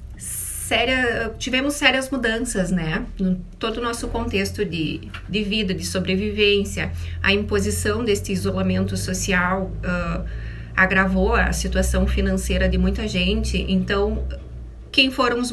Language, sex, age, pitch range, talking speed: Portuguese, female, 30-49, 185-240 Hz, 110 wpm